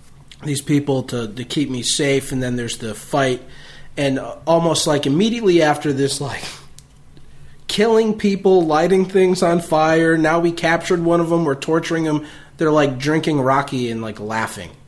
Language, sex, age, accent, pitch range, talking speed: English, male, 30-49, American, 125-155 Hz, 165 wpm